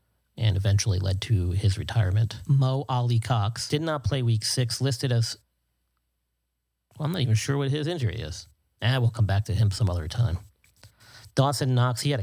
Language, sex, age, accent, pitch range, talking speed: English, male, 40-59, American, 105-120 Hz, 190 wpm